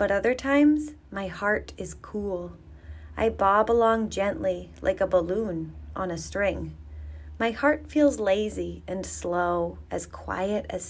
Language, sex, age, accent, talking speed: English, female, 30-49, American, 145 wpm